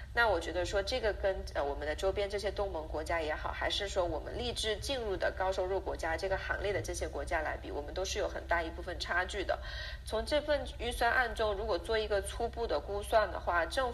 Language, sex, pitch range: Chinese, female, 160-215 Hz